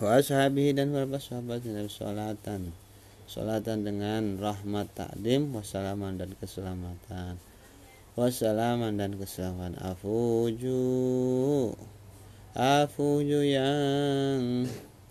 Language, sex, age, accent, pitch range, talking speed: Indonesian, male, 20-39, native, 100-120 Hz, 85 wpm